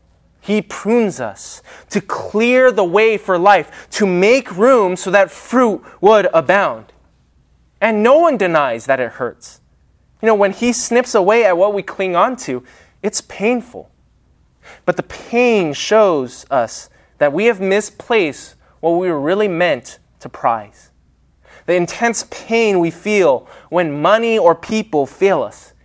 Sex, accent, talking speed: male, American, 150 wpm